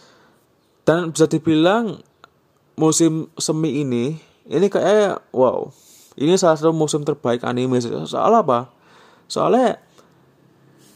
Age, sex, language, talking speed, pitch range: 20-39, male, Indonesian, 100 wpm, 130-175 Hz